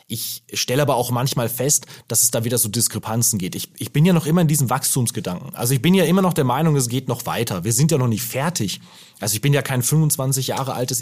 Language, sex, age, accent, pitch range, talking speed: German, male, 30-49, German, 115-155 Hz, 260 wpm